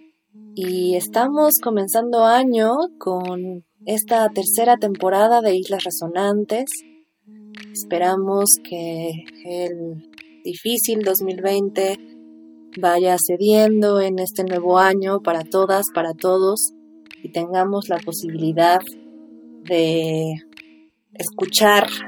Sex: female